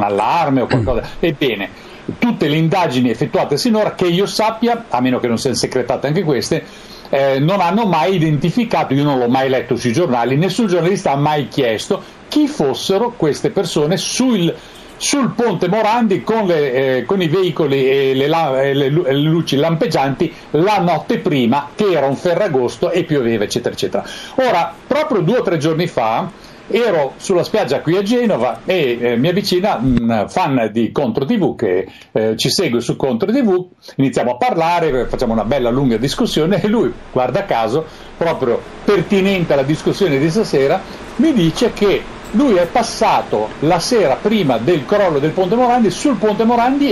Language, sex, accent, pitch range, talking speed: Italian, male, native, 140-210 Hz, 170 wpm